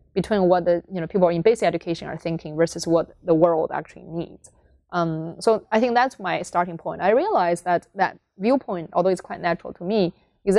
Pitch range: 170-200 Hz